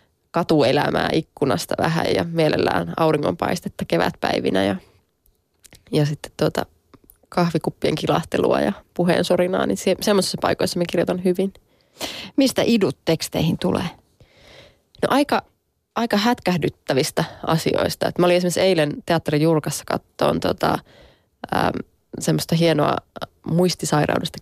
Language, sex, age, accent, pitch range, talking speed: Finnish, female, 20-39, native, 150-190 Hz, 105 wpm